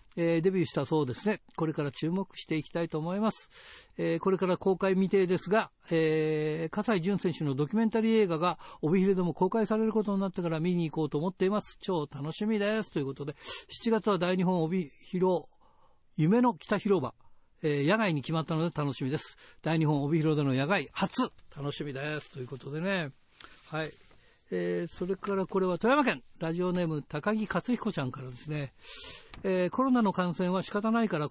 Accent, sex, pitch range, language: native, male, 155-200 Hz, Japanese